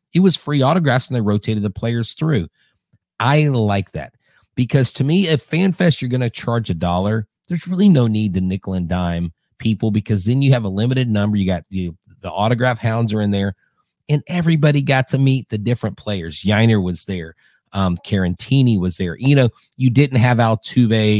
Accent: American